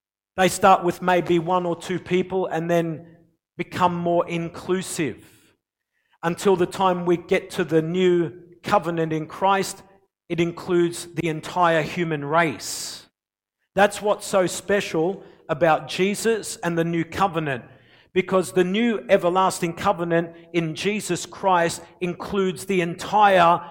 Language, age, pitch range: English, 50-69, 160-195 Hz